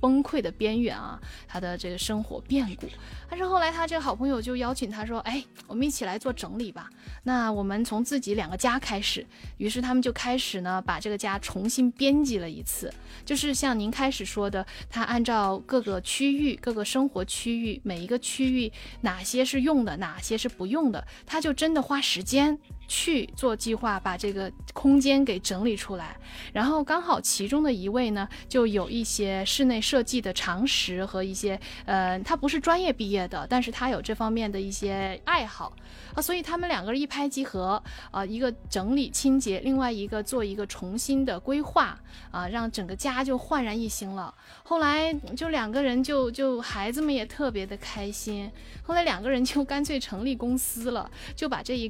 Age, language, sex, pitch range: 20-39, Chinese, female, 200-270 Hz